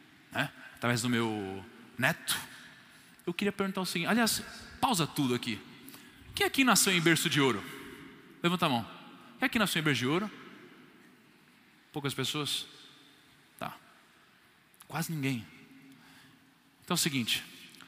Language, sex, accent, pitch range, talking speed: Portuguese, male, Brazilian, 130-175 Hz, 140 wpm